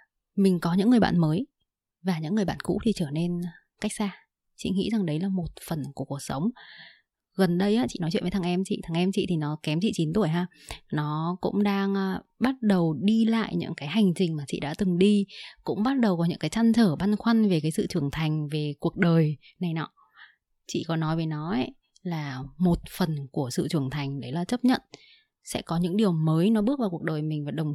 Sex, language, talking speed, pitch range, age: female, Vietnamese, 240 wpm, 160-210 Hz, 20-39